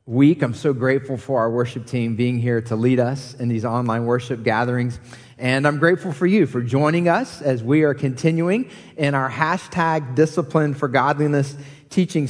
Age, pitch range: 30-49, 130-165 Hz